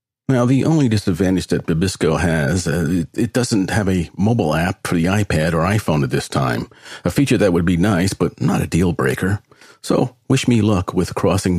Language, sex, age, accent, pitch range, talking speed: English, male, 50-69, American, 85-115 Hz, 195 wpm